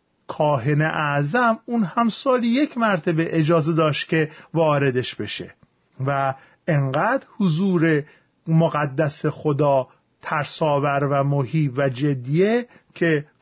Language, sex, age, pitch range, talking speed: Persian, male, 40-59, 150-220 Hz, 105 wpm